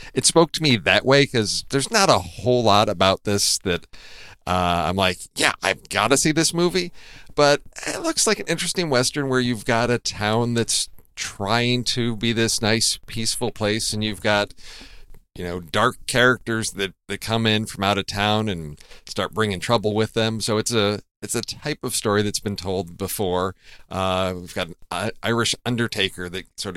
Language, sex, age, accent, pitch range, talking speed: English, male, 40-59, American, 95-125 Hz, 195 wpm